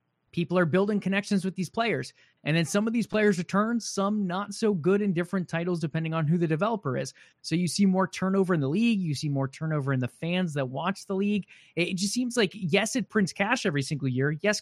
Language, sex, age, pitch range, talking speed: English, male, 20-39, 145-195 Hz, 240 wpm